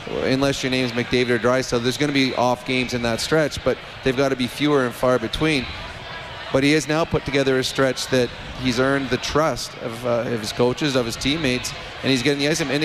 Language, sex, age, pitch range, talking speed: English, male, 30-49, 125-145 Hz, 245 wpm